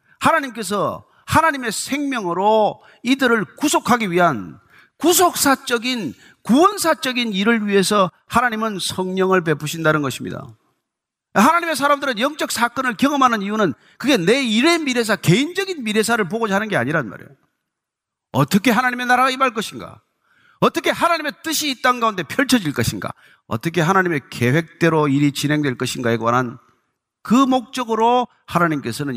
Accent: native